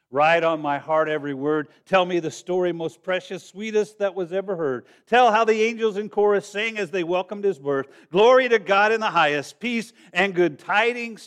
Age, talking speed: 50-69, 210 wpm